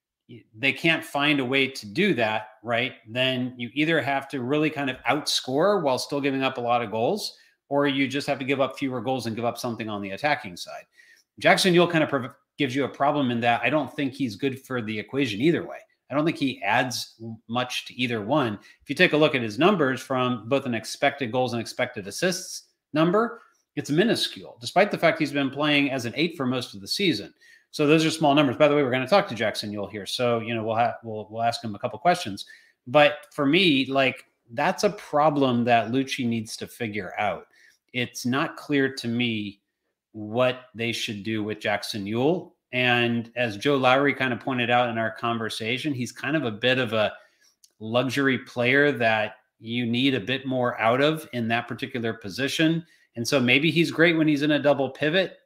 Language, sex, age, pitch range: English, male, 40-59, 115-145 Hz